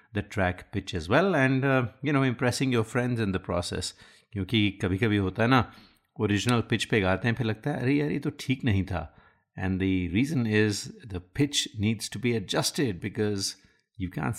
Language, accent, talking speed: Hindi, native, 205 wpm